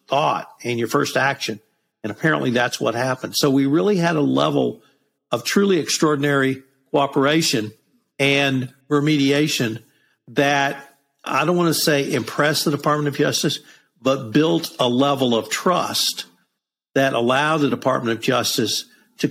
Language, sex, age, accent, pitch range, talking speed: English, male, 50-69, American, 115-150 Hz, 145 wpm